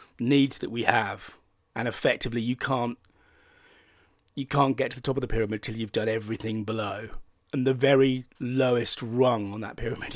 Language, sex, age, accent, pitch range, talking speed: English, male, 40-59, British, 110-135 Hz, 175 wpm